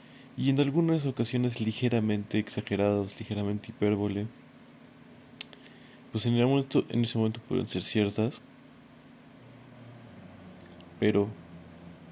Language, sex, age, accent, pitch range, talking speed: Spanish, male, 30-49, Mexican, 105-120 Hz, 90 wpm